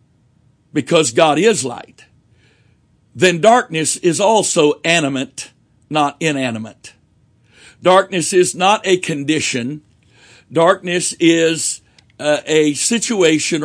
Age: 60-79